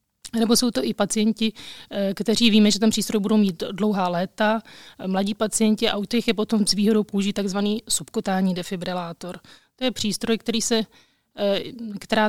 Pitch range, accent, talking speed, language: 200-225 Hz, native, 160 wpm, Czech